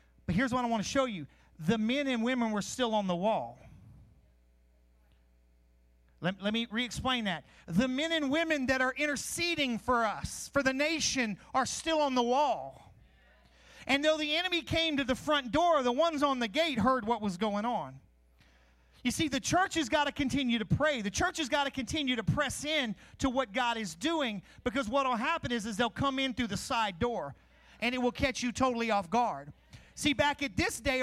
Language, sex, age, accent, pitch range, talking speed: English, male, 40-59, American, 210-275 Hz, 205 wpm